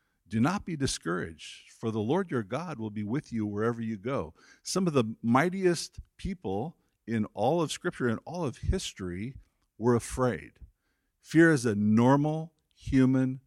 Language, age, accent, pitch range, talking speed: English, 50-69, American, 95-125 Hz, 160 wpm